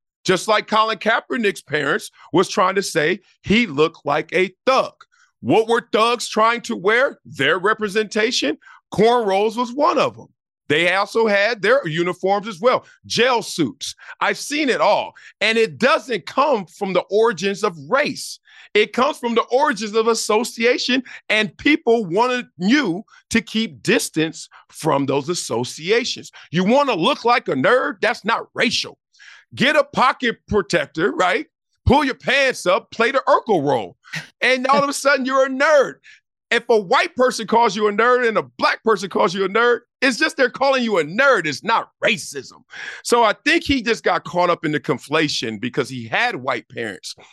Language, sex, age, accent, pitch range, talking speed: English, male, 40-59, American, 180-245 Hz, 175 wpm